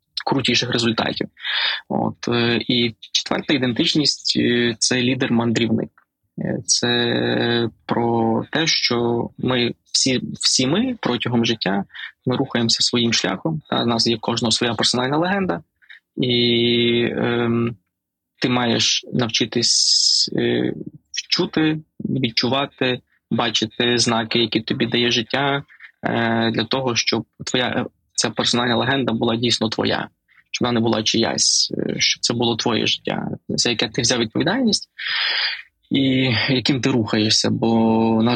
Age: 20-39